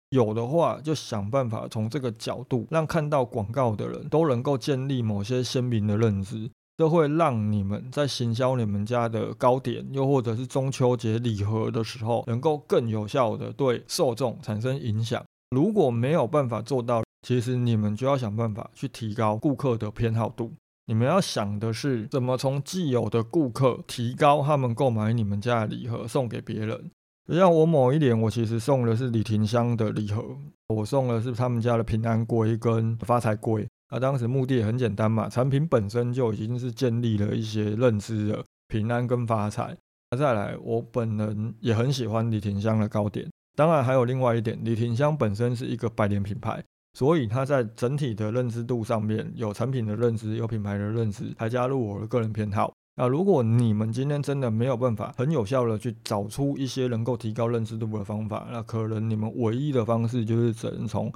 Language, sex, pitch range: Chinese, male, 110-130 Hz